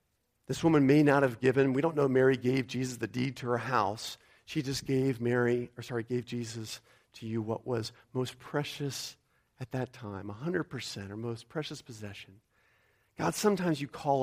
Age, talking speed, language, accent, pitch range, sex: 40-59, 180 wpm, English, American, 110-145 Hz, male